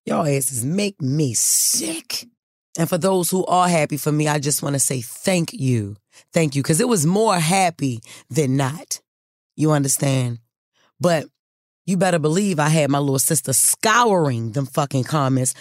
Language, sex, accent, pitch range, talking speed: English, female, American, 135-180 Hz, 170 wpm